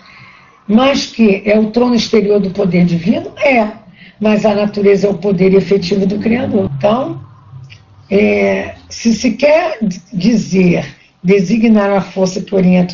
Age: 60-79